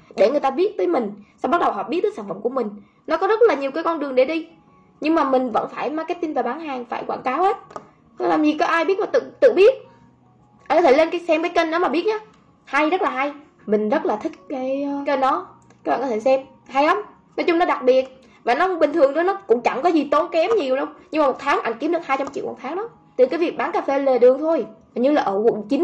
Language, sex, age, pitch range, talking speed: Vietnamese, female, 10-29, 255-345 Hz, 290 wpm